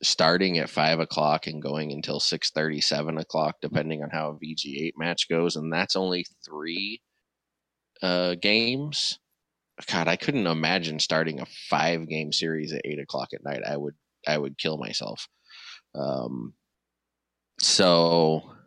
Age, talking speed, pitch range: 20-39, 150 wpm, 80-90 Hz